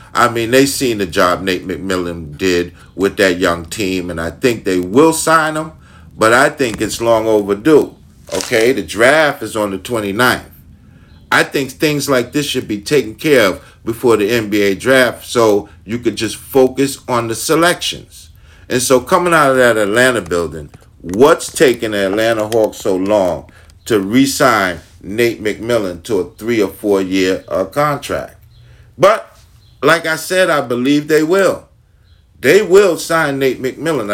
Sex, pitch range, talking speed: male, 100-145 Hz, 165 wpm